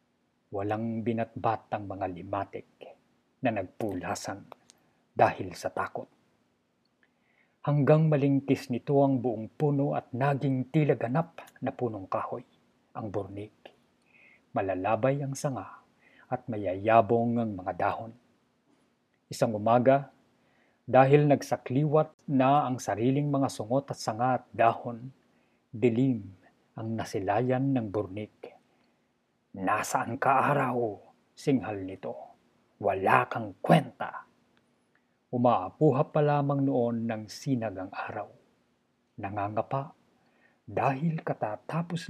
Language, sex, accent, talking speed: Filipino, male, native, 95 wpm